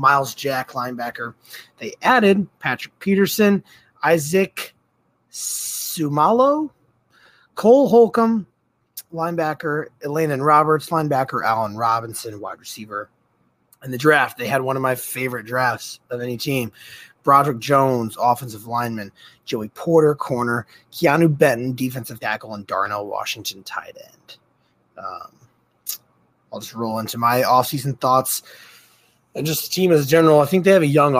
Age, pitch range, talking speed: 30-49, 115-150 Hz, 135 wpm